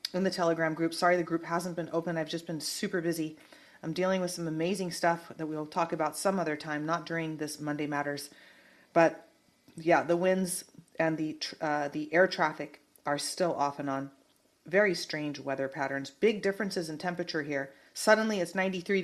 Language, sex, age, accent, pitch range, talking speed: English, female, 30-49, American, 150-195 Hz, 190 wpm